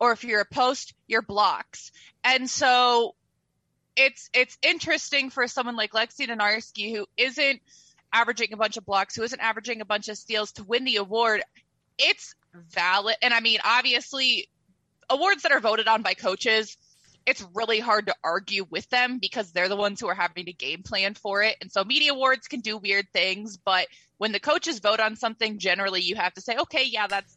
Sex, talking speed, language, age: female, 195 wpm, English, 20-39